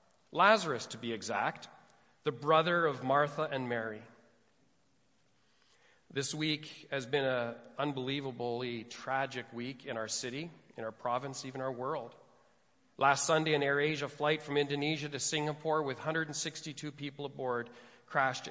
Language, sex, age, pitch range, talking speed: English, male, 40-59, 125-150 Hz, 135 wpm